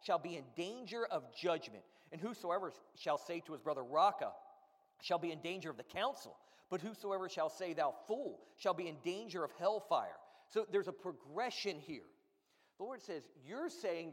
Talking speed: 185 wpm